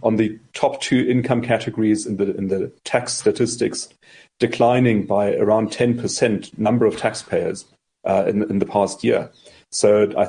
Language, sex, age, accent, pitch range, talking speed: English, male, 40-59, German, 105-125 Hz, 155 wpm